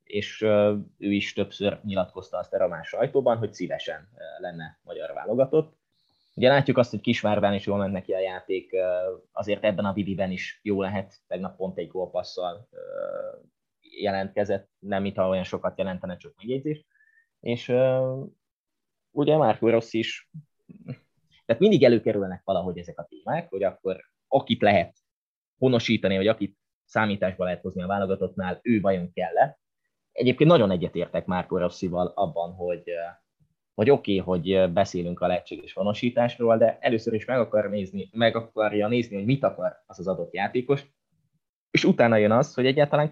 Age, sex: 20-39, male